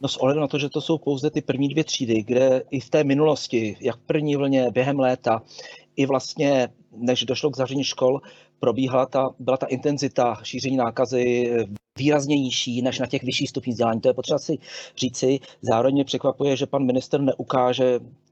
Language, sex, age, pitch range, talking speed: Czech, male, 40-59, 120-140 Hz, 190 wpm